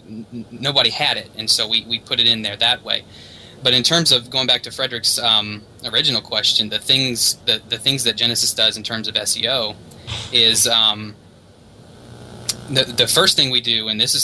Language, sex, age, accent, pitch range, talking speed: English, male, 20-39, American, 110-125 Hz, 200 wpm